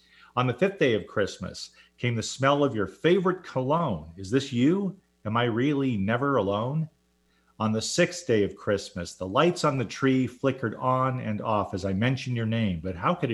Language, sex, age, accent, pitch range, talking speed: English, male, 50-69, American, 95-130 Hz, 200 wpm